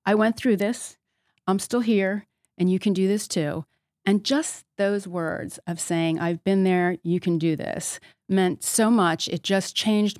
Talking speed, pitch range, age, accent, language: 190 wpm, 175-210 Hz, 30-49, American, English